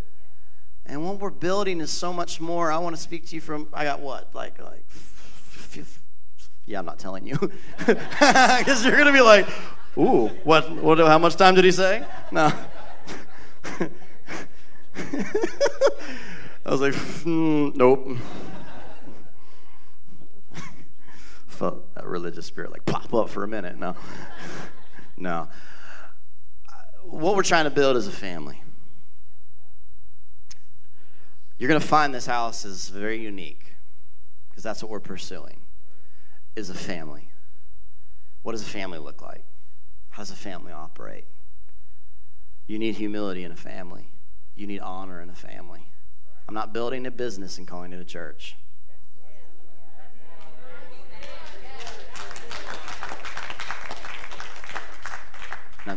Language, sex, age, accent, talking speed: English, male, 30-49, American, 130 wpm